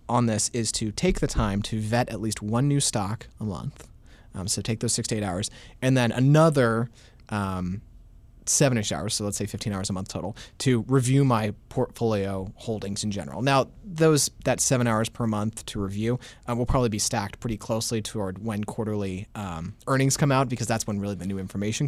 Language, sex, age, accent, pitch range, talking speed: English, male, 30-49, American, 105-120 Hz, 205 wpm